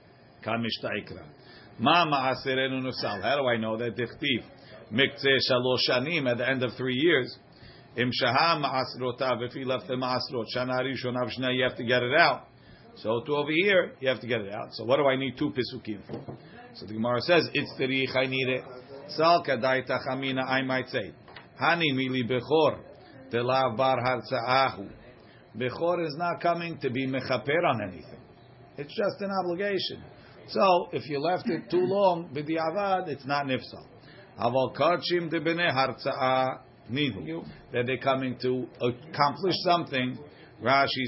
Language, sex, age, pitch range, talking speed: English, male, 50-69, 125-165 Hz, 110 wpm